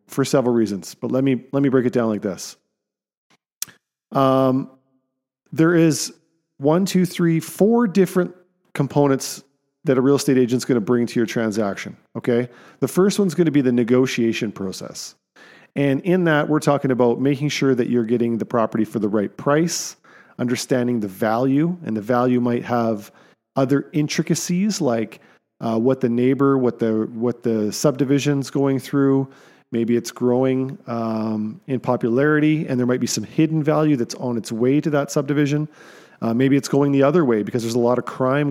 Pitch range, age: 115-145 Hz, 40-59